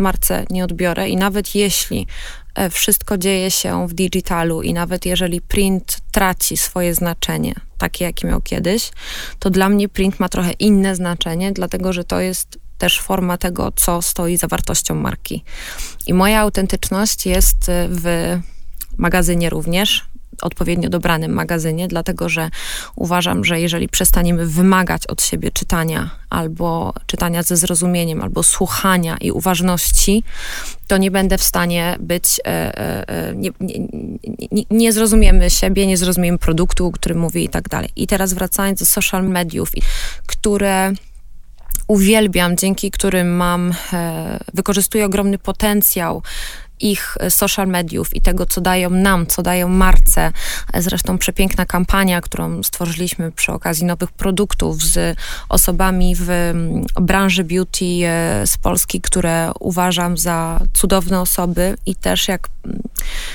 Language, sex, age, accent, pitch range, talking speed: Polish, female, 20-39, native, 175-195 Hz, 135 wpm